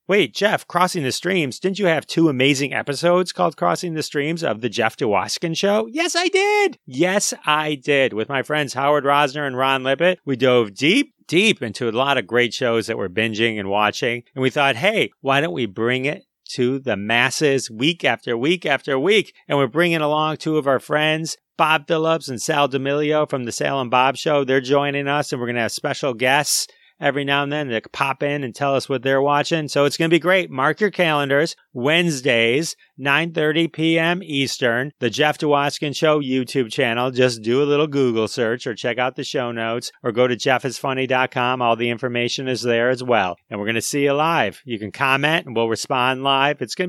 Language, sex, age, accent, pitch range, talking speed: English, male, 30-49, American, 125-160 Hz, 210 wpm